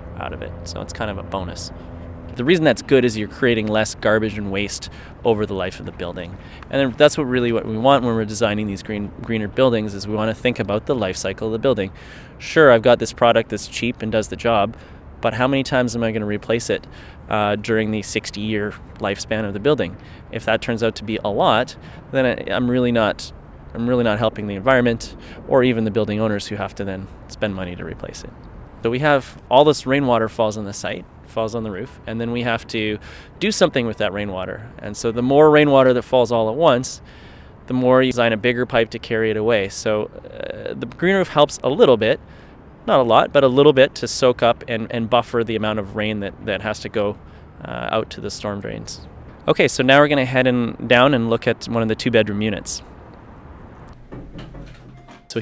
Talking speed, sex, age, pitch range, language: 230 wpm, male, 20-39, 100-125 Hz, English